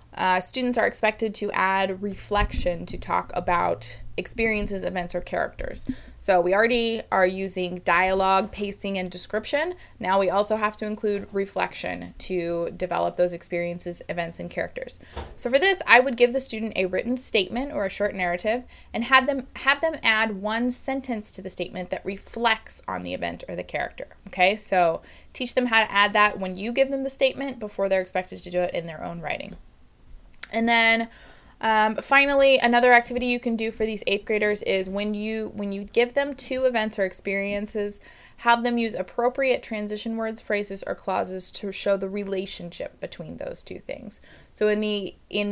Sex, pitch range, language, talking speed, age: female, 190-235 Hz, English, 185 wpm, 20-39